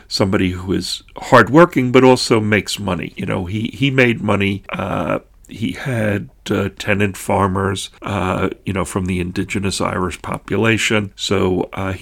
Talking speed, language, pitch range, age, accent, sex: 150 wpm, English, 95-115 Hz, 40-59, American, male